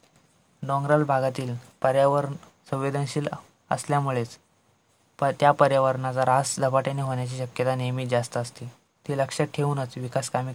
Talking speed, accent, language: 110 wpm, native, Marathi